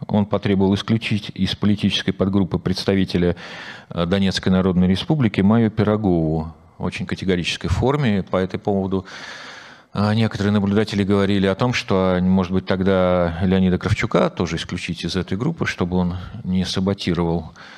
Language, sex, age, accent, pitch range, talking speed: Russian, male, 40-59, native, 90-110 Hz, 130 wpm